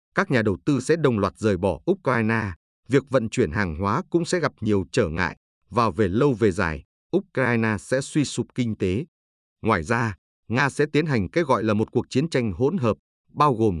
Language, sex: Vietnamese, male